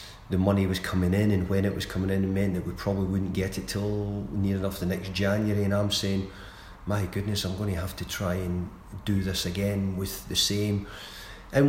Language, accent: English, British